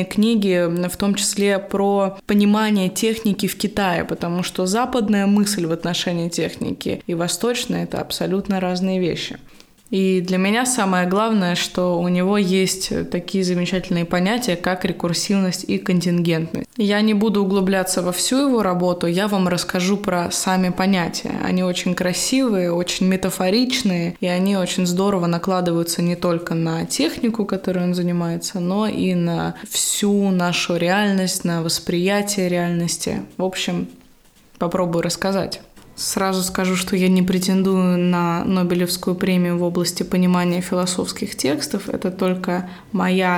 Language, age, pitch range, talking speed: Russian, 20-39, 180-205 Hz, 135 wpm